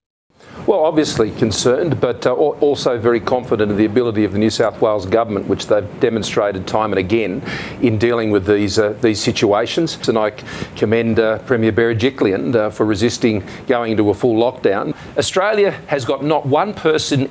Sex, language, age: male, Italian, 40-59